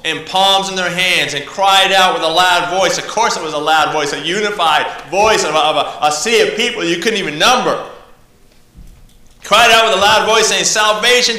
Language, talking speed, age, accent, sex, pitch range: English, 210 wpm, 30-49, American, male, 190-250 Hz